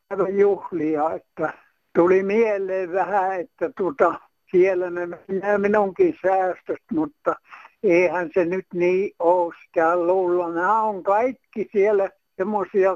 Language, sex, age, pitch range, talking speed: Finnish, male, 60-79, 175-220 Hz, 110 wpm